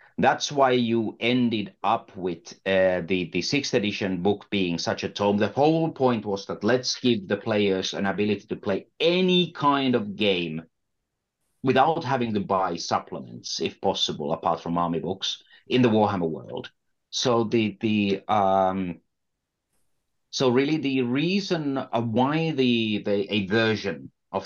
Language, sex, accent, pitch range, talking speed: English, male, Finnish, 95-125 Hz, 150 wpm